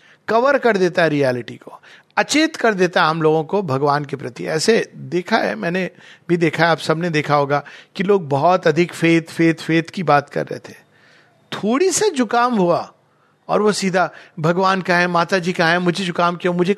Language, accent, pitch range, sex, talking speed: Hindi, native, 160-230 Hz, male, 200 wpm